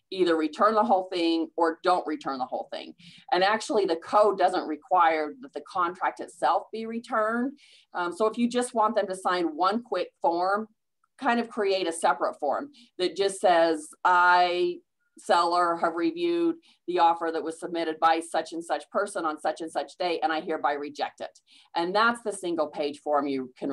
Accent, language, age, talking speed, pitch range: American, English, 40-59, 190 wpm, 160-215 Hz